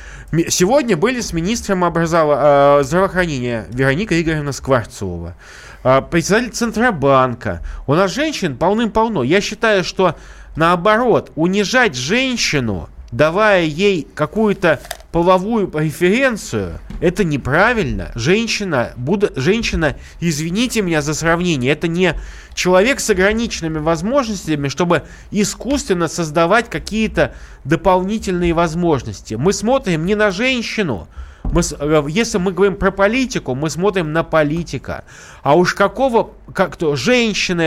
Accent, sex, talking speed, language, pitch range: native, male, 100 wpm, Russian, 150-205 Hz